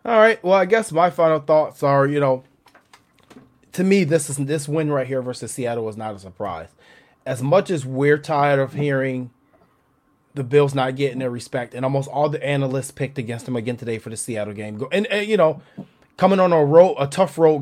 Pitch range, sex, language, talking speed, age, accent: 130-165 Hz, male, English, 220 wpm, 30-49, American